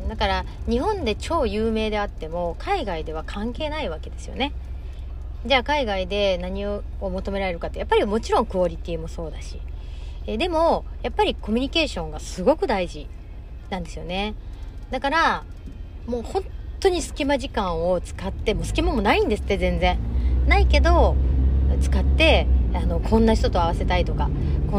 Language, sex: Japanese, female